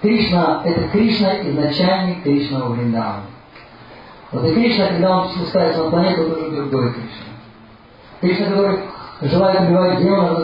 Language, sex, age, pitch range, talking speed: Russian, male, 40-59, 135-185 Hz, 125 wpm